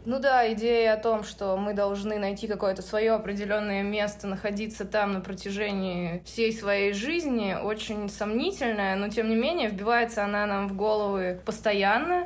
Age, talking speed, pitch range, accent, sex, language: 20-39, 155 wpm, 205-275 Hz, native, female, Russian